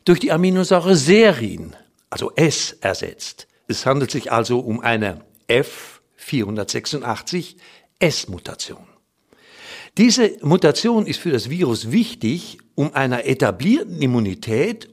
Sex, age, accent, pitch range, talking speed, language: male, 60-79, German, 120-185 Hz, 100 wpm, German